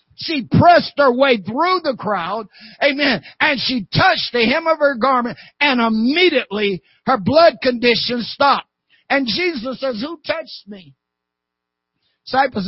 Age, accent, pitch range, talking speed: 50-69, American, 155-235 Hz, 135 wpm